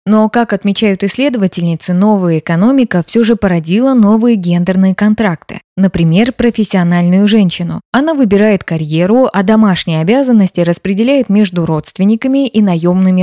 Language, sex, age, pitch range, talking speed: Russian, female, 20-39, 175-225 Hz, 120 wpm